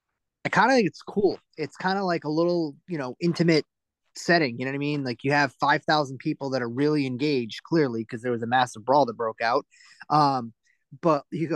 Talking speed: 225 wpm